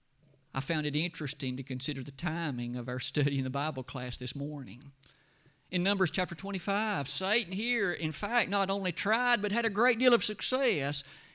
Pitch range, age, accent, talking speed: 135-180 Hz, 50-69, American, 185 wpm